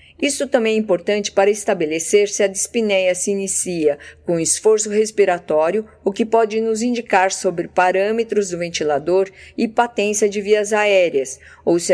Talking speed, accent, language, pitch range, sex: 150 wpm, Brazilian, Portuguese, 180-215 Hz, female